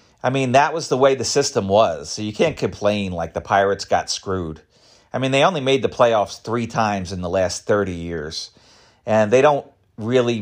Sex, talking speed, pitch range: male, 205 wpm, 90-115 Hz